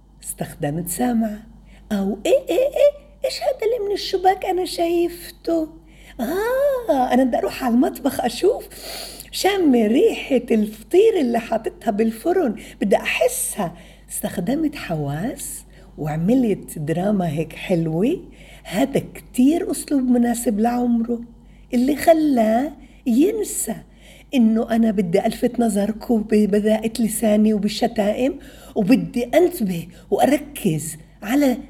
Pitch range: 195-290 Hz